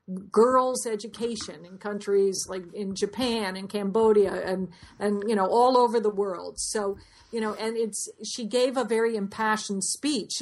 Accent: American